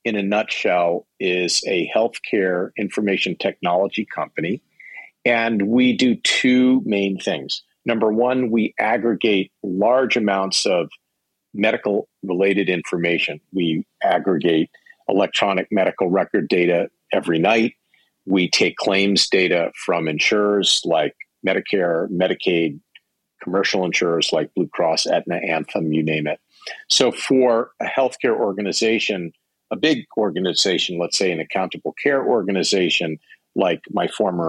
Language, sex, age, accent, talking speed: English, male, 50-69, American, 120 wpm